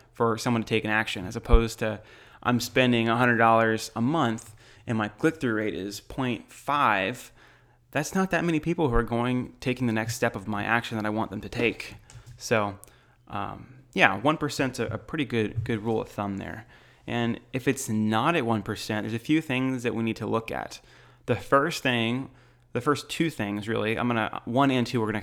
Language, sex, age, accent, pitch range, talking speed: English, male, 20-39, American, 110-130 Hz, 210 wpm